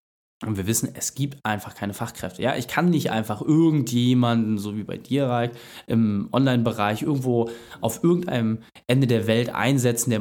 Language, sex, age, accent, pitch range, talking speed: German, male, 20-39, German, 115-150 Hz, 165 wpm